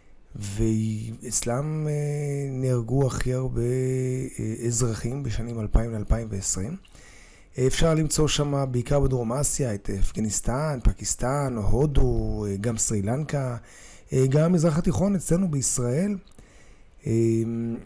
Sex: male